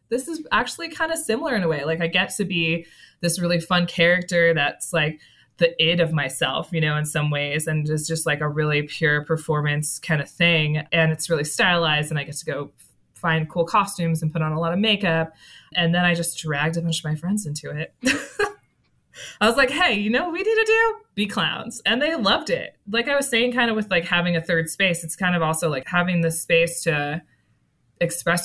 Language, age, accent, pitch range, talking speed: English, 20-39, American, 150-175 Hz, 230 wpm